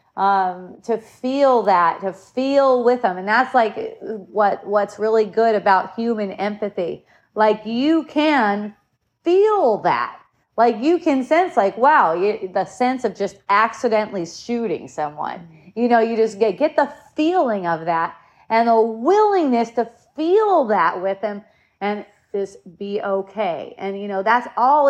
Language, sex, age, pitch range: English, female, 30-49, 195-255 Hz